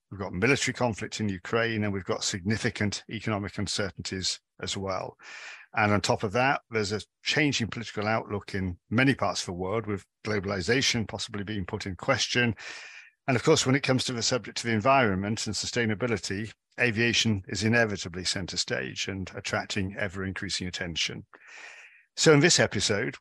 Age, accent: 50-69, British